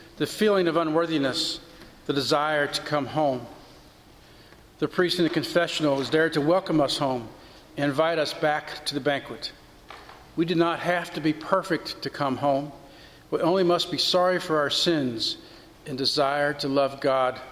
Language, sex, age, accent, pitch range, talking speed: English, male, 50-69, American, 140-170 Hz, 170 wpm